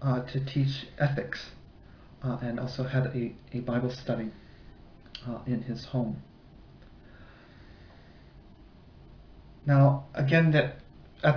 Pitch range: 120-135 Hz